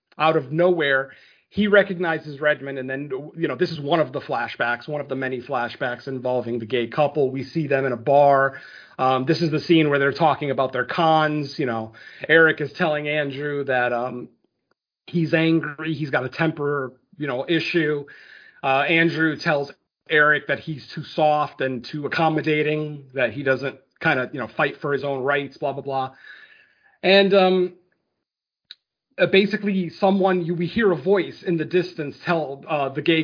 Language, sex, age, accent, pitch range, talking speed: English, male, 30-49, American, 140-180 Hz, 180 wpm